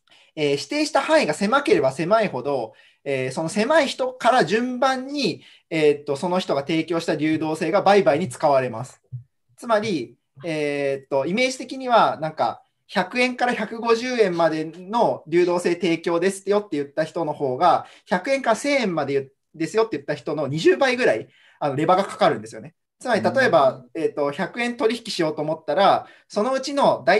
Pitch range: 150-235 Hz